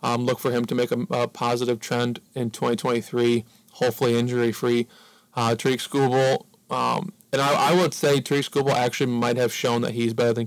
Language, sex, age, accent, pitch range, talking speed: English, male, 20-39, American, 120-125 Hz, 190 wpm